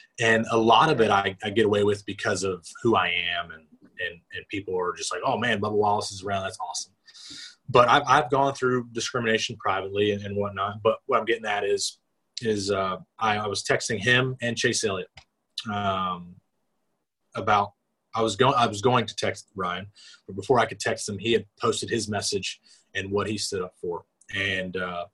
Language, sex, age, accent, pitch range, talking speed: English, male, 20-39, American, 100-120 Hz, 205 wpm